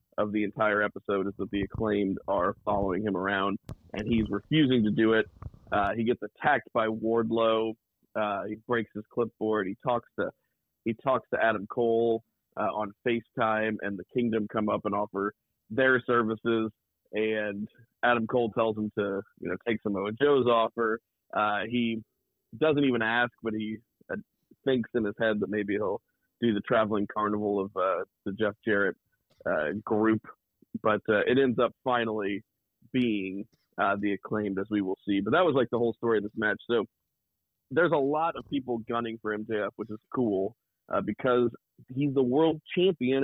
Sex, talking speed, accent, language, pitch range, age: male, 180 wpm, American, English, 105-120 Hz, 30-49